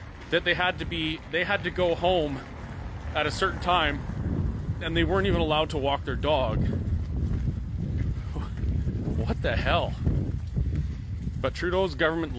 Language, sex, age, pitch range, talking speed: English, male, 30-49, 95-155 Hz, 140 wpm